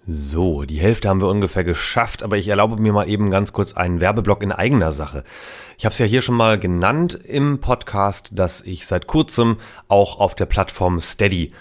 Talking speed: 200 wpm